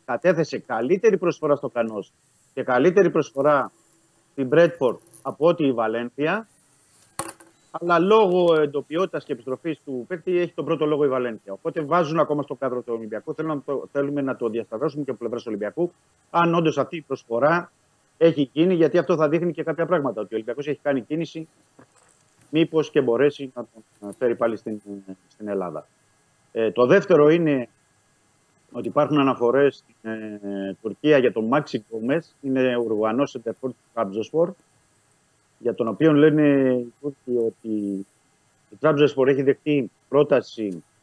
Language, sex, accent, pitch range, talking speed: Greek, male, native, 115-160 Hz, 155 wpm